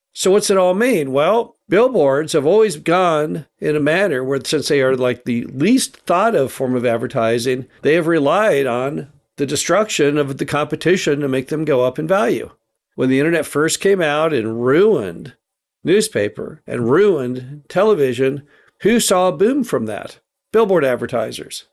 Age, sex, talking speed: 50-69, male, 170 wpm